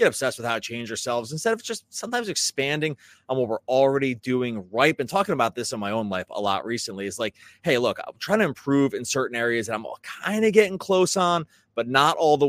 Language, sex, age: English, male, 30-49